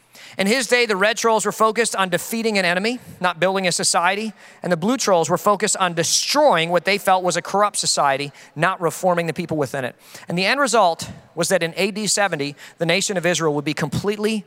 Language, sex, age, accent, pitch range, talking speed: English, male, 40-59, American, 175-235 Hz, 220 wpm